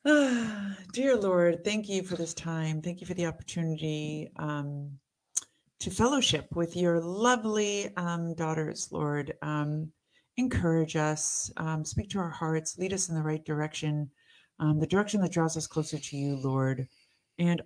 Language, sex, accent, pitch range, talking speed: English, female, American, 145-170 Hz, 160 wpm